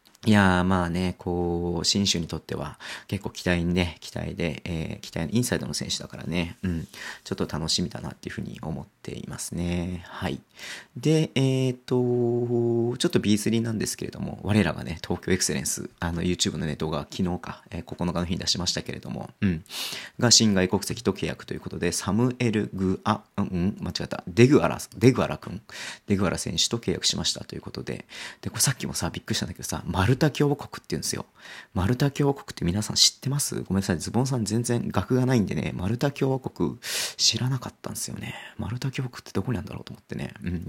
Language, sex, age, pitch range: Japanese, male, 40-59, 90-120 Hz